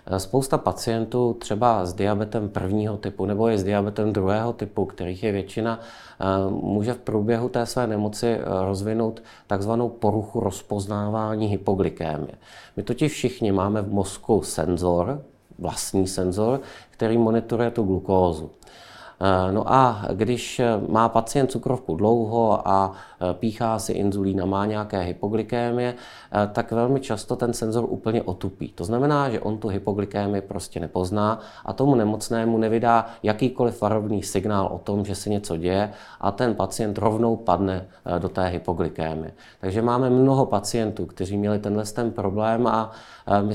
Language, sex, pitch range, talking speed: Czech, male, 100-115 Hz, 140 wpm